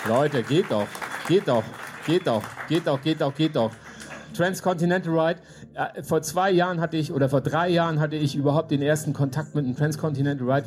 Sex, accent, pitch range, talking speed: male, German, 140-170 Hz, 195 wpm